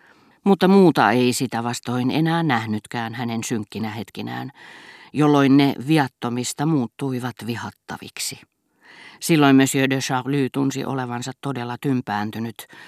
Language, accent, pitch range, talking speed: Finnish, native, 115-150 Hz, 105 wpm